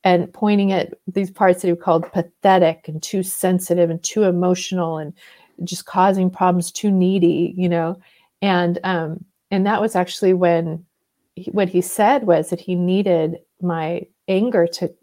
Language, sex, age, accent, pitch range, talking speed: English, female, 40-59, American, 175-205 Hz, 165 wpm